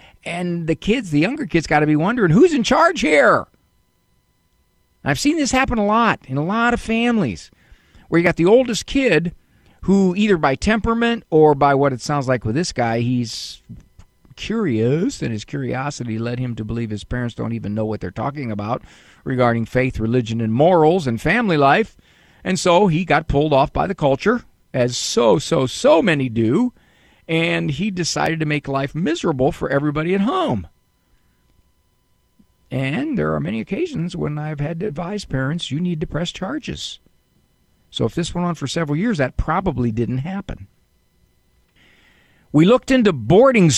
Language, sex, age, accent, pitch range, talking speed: English, male, 50-69, American, 110-175 Hz, 175 wpm